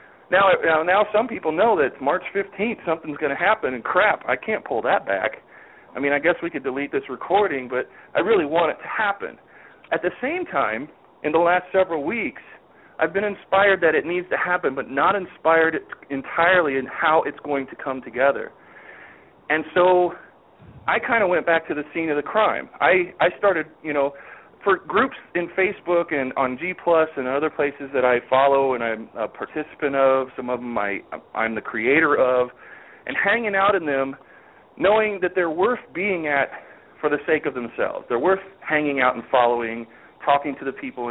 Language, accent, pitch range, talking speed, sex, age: English, American, 135-180 Hz, 195 wpm, male, 40-59